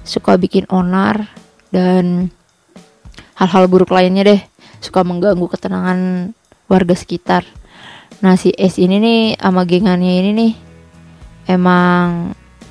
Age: 20-39